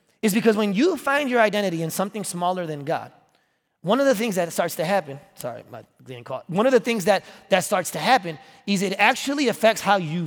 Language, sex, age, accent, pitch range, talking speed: English, male, 30-49, American, 180-240 Hz, 220 wpm